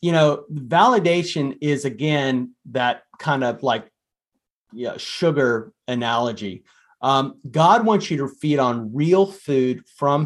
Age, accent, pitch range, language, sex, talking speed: 30-49, American, 115-145 Hz, English, male, 125 wpm